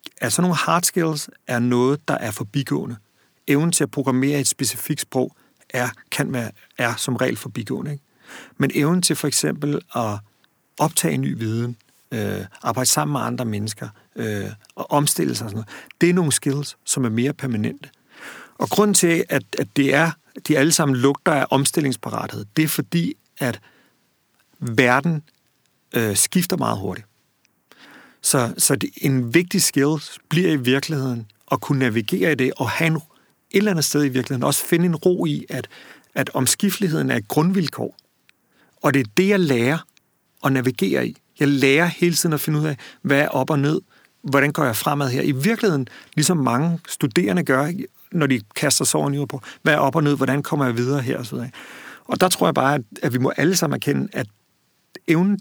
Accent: native